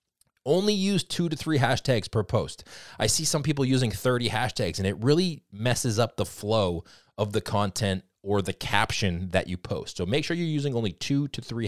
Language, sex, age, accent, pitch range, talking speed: English, male, 20-39, American, 100-135 Hz, 205 wpm